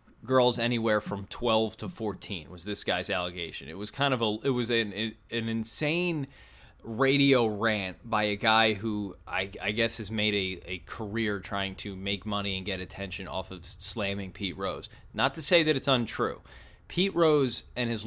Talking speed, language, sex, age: 185 wpm, English, male, 20-39